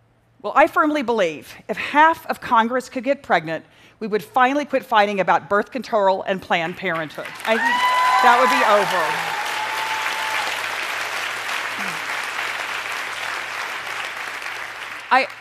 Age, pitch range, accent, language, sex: 40-59, 195-260 Hz, American, Korean, female